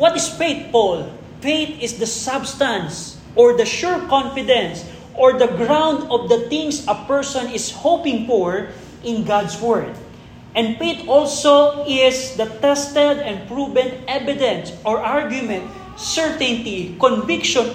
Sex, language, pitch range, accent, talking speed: male, Filipino, 210-260 Hz, native, 130 wpm